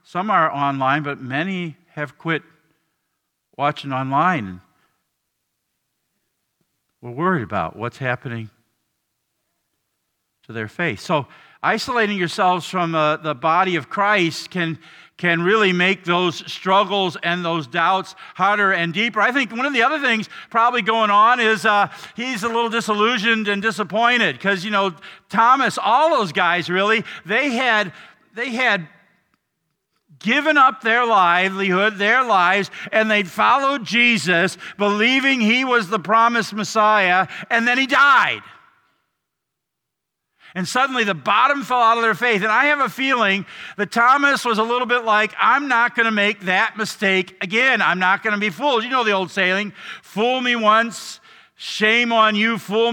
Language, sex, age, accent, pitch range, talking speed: English, male, 50-69, American, 180-230 Hz, 155 wpm